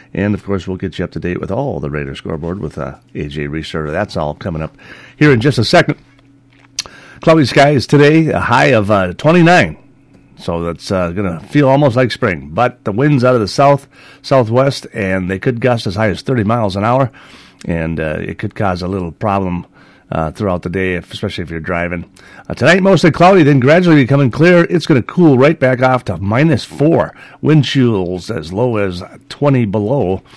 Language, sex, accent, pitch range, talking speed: English, male, American, 100-150 Hz, 205 wpm